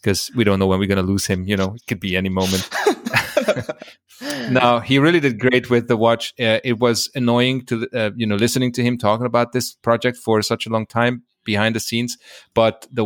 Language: English